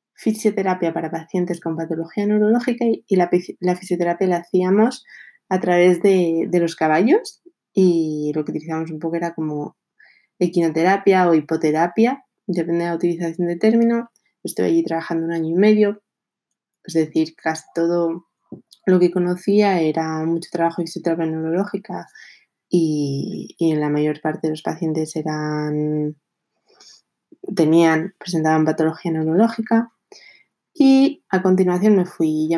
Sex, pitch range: female, 160-190 Hz